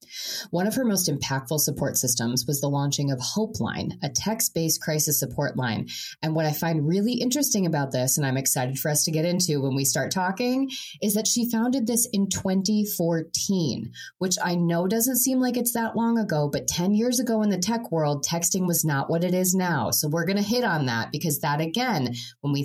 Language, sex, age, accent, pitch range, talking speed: English, female, 20-39, American, 145-190 Hz, 215 wpm